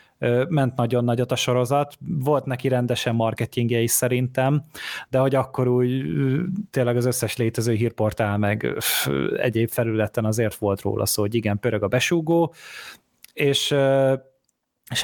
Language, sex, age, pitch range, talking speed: Hungarian, male, 30-49, 115-140 Hz, 135 wpm